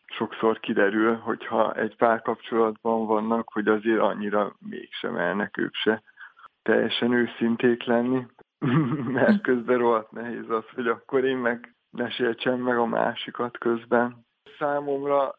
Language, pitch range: Hungarian, 110-125 Hz